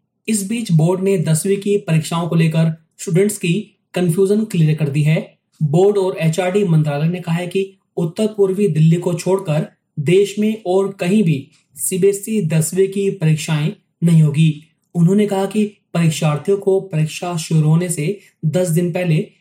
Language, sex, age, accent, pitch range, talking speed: Hindi, male, 30-49, native, 160-195 Hz, 160 wpm